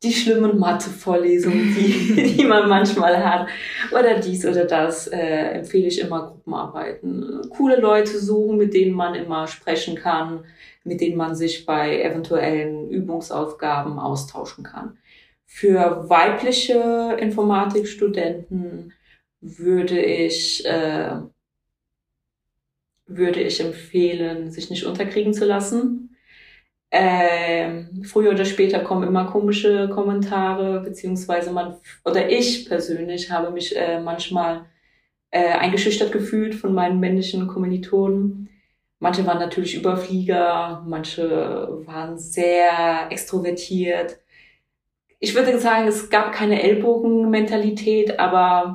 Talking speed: 110 wpm